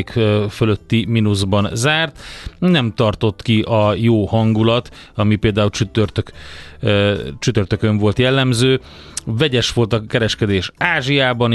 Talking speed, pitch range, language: 105 wpm, 100-120 Hz, Hungarian